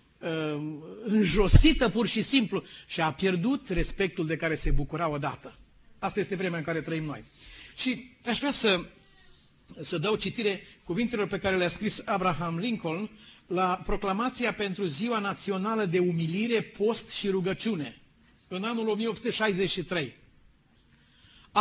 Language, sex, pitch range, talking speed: Romanian, male, 180-235 Hz, 135 wpm